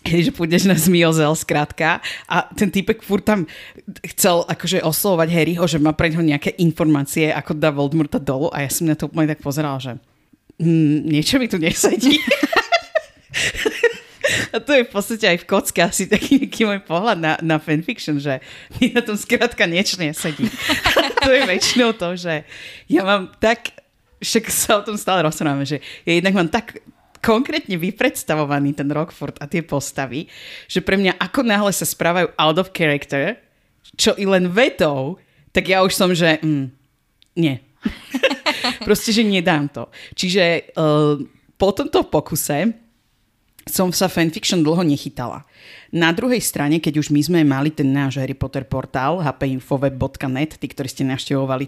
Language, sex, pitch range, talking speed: Slovak, female, 145-195 Hz, 160 wpm